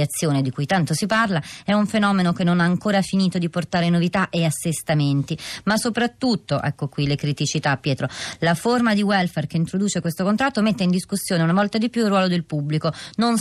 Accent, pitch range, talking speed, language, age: native, 155-190 Hz, 205 wpm, Italian, 30-49